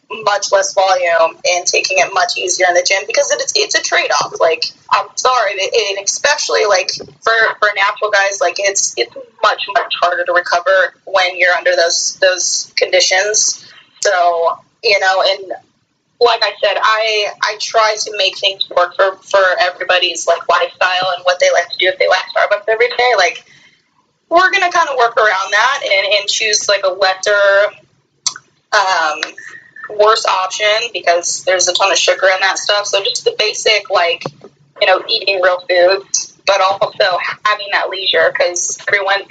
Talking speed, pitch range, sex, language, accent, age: 175 wpm, 180-240 Hz, female, English, American, 20-39